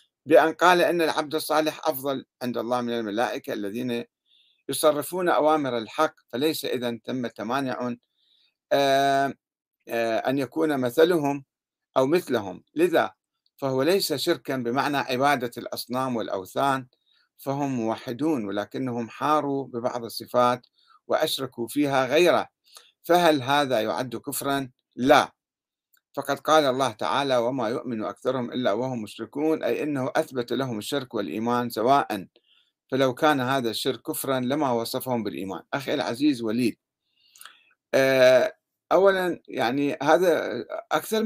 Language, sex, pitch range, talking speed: Arabic, male, 125-160 Hz, 110 wpm